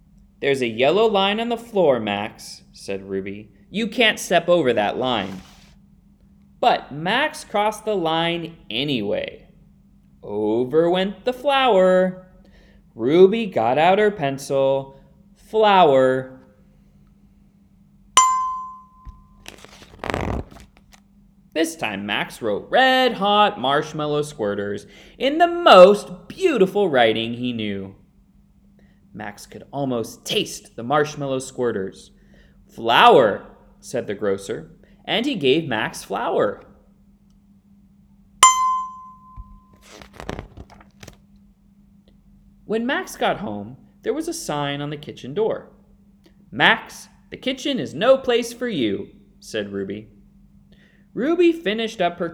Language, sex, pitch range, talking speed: English, male, 135-220 Hz, 100 wpm